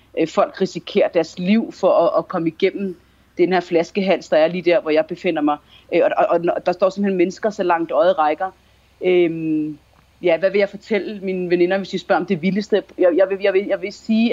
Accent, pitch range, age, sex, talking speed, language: native, 165-200 Hz, 40-59, female, 205 wpm, Danish